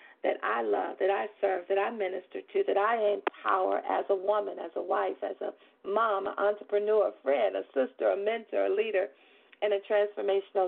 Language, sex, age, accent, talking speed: English, female, 40-59, American, 195 wpm